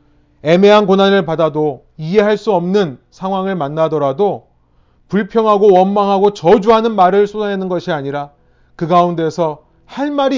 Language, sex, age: Korean, male, 30-49